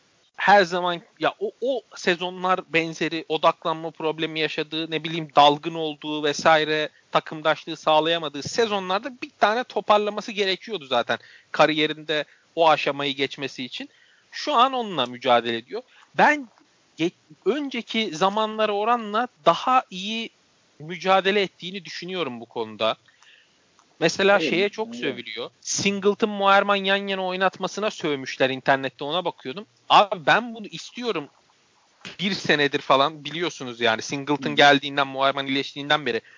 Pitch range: 150-215 Hz